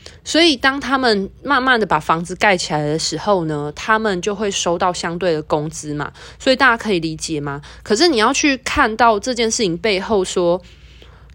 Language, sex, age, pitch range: Chinese, female, 20-39, 170-225 Hz